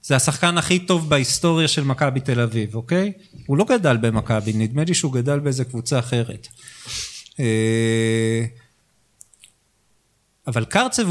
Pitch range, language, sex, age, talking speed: 120-175 Hz, Hebrew, male, 40-59, 125 wpm